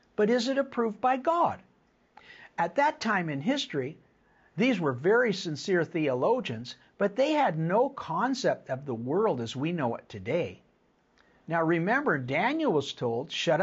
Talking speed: 155 wpm